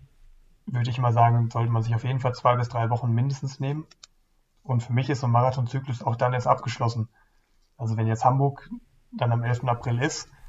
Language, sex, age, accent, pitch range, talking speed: German, male, 30-49, German, 120-130 Hz, 205 wpm